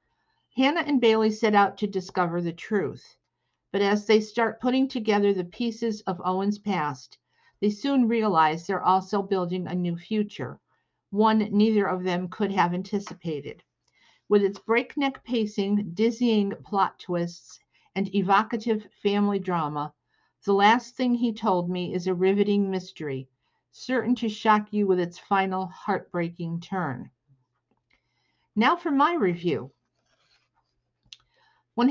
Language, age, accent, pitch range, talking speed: English, 50-69, American, 180-225 Hz, 135 wpm